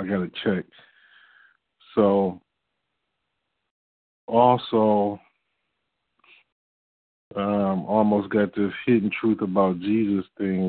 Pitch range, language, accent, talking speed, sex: 95-110 Hz, English, American, 85 wpm, male